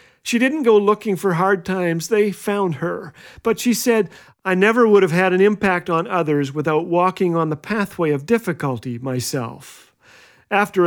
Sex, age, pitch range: male, 50-69, 155-200 Hz